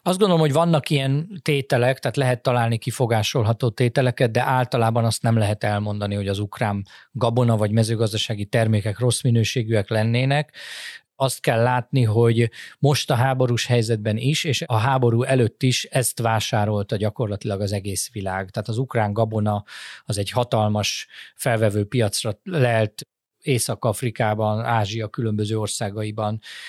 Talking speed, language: 135 wpm, Hungarian